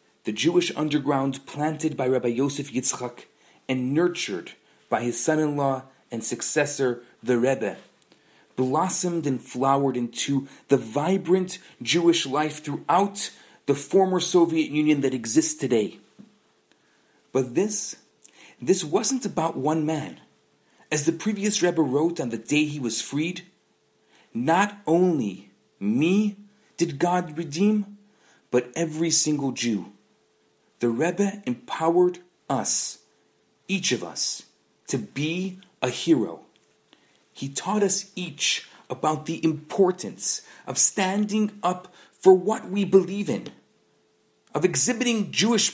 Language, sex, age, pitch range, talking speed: English, male, 40-59, 140-195 Hz, 120 wpm